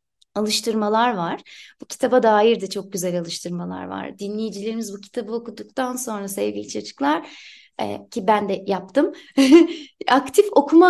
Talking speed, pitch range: 130 wpm, 175-250 Hz